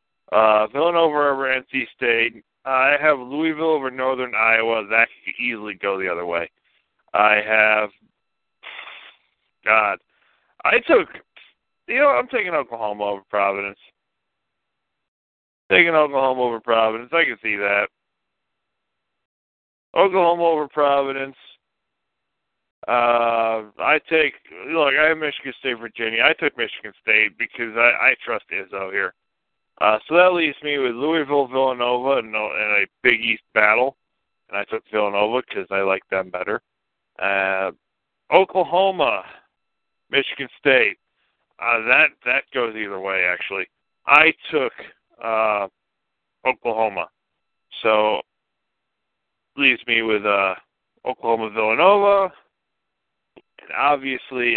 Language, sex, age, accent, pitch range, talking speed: English, male, 50-69, American, 105-135 Hz, 115 wpm